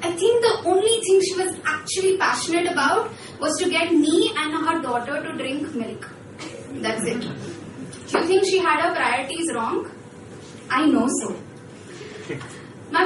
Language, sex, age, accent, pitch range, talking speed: Hindi, female, 20-39, native, 255-350 Hz, 155 wpm